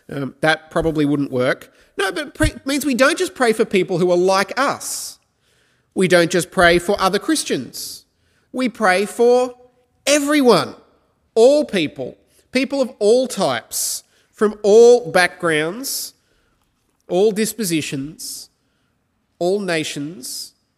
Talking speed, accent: 125 wpm, Australian